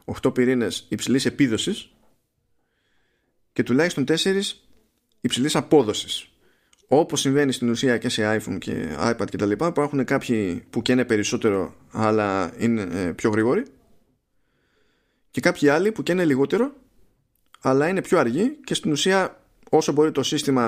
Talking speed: 140 wpm